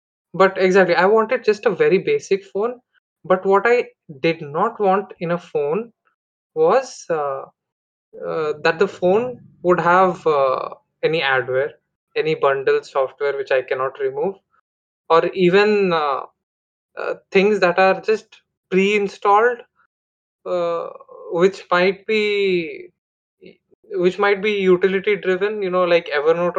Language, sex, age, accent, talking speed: English, male, 20-39, Indian, 130 wpm